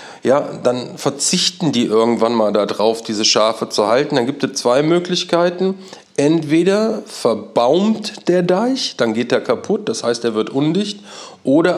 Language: German